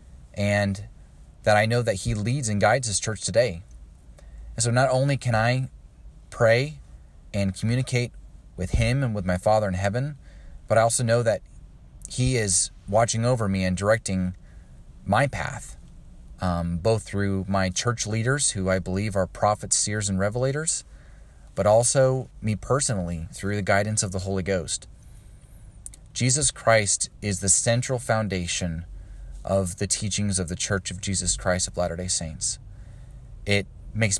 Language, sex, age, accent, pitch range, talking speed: English, male, 30-49, American, 90-115 Hz, 155 wpm